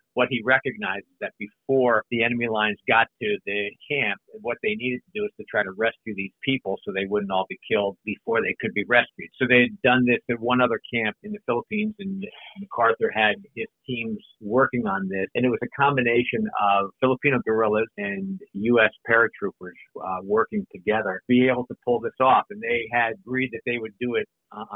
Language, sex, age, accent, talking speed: English, male, 50-69, American, 210 wpm